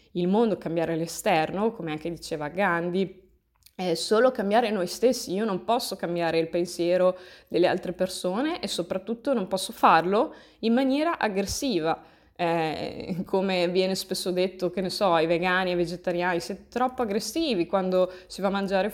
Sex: female